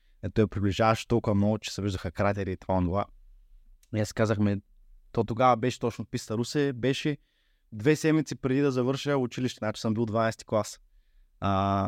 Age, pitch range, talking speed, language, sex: 20-39, 100-130 Hz, 175 wpm, Bulgarian, male